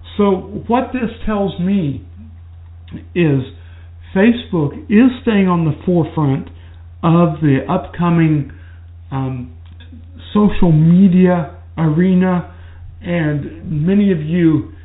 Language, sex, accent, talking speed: English, male, American, 95 wpm